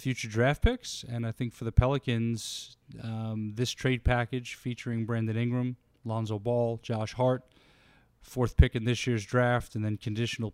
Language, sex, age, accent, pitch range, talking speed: English, male, 30-49, American, 115-140 Hz, 165 wpm